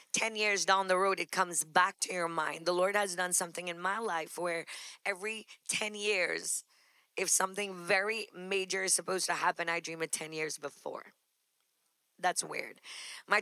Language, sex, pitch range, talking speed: English, female, 180-205 Hz, 180 wpm